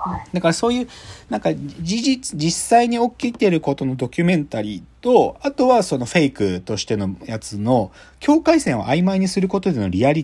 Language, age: Japanese, 40-59